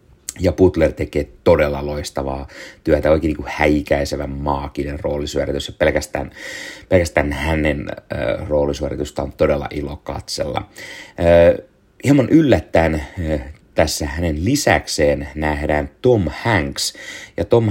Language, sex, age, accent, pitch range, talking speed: Finnish, male, 30-49, native, 75-95 Hz, 110 wpm